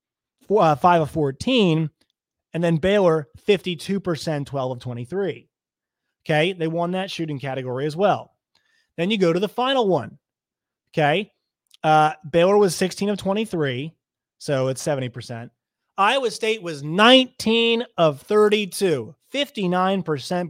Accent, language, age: American, English, 30-49